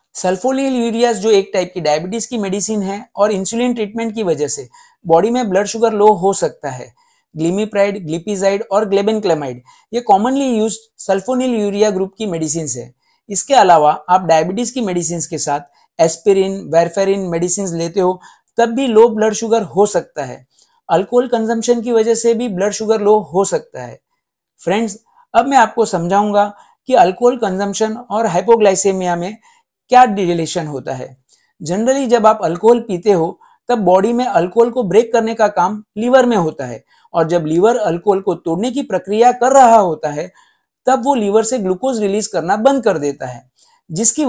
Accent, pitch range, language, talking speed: native, 180-240 Hz, Hindi, 110 wpm